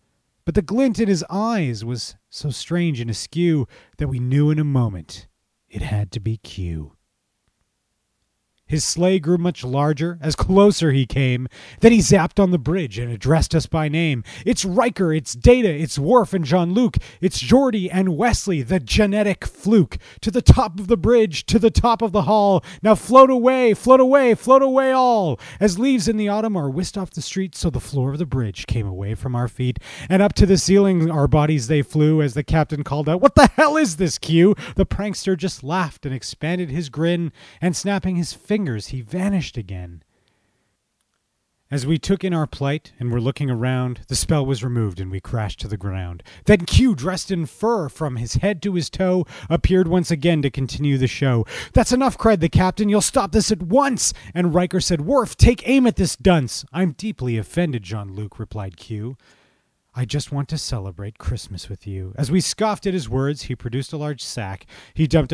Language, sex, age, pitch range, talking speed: English, male, 30-49, 125-195 Hz, 200 wpm